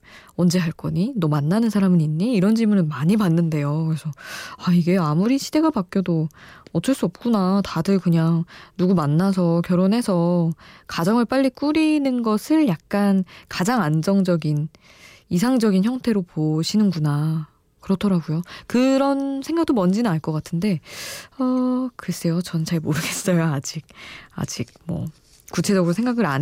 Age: 20-39